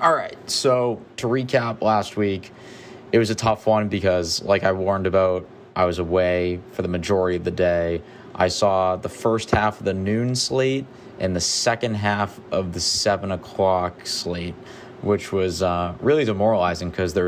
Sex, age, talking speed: male, 20-39, 175 wpm